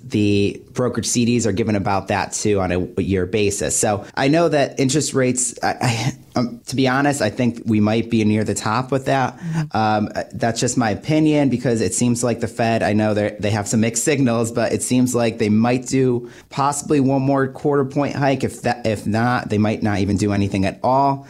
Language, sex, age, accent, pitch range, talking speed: English, male, 30-49, American, 105-125 Hz, 220 wpm